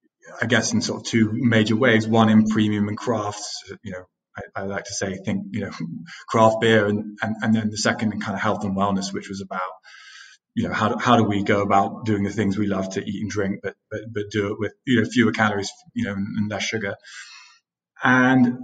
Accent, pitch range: British, 105-125 Hz